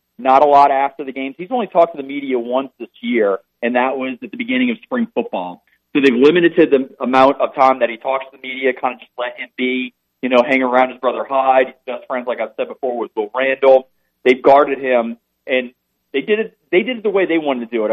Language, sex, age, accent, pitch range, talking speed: English, male, 40-59, American, 120-145 Hz, 260 wpm